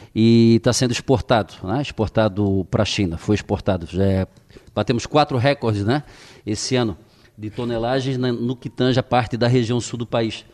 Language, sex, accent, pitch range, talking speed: Portuguese, male, Brazilian, 115-145 Hz, 165 wpm